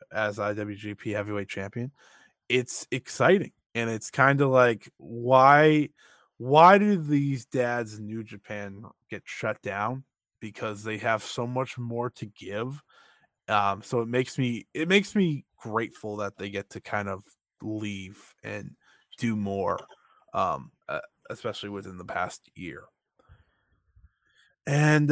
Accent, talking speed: American, 135 wpm